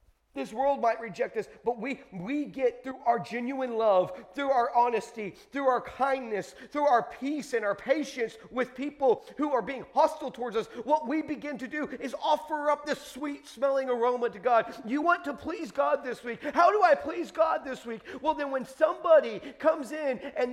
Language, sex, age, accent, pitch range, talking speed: English, male, 40-59, American, 180-280 Hz, 200 wpm